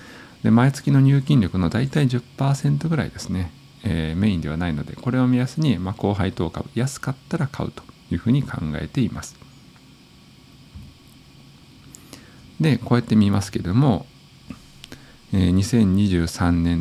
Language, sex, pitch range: Japanese, male, 85-125 Hz